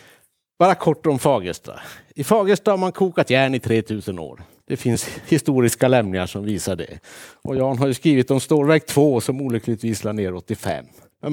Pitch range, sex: 115-175 Hz, male